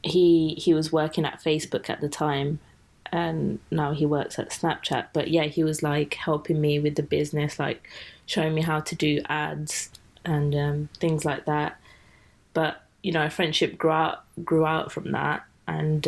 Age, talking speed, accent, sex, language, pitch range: 20-39, 185 wpm, British, female, English, 150-165 Hz